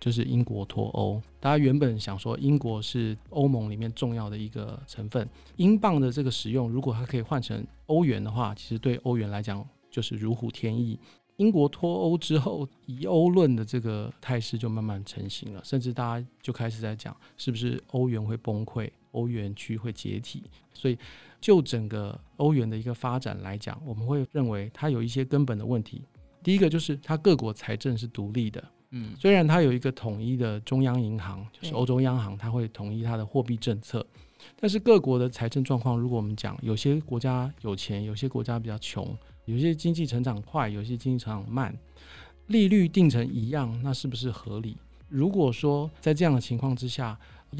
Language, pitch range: Chinese, 110-140 Hz